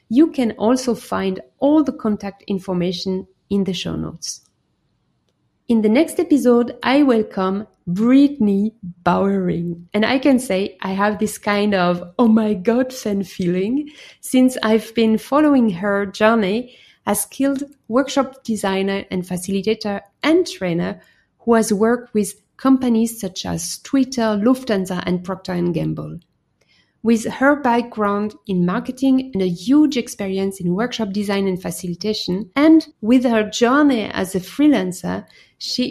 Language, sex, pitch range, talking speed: English, female, 190-250 Hz, 135 wpm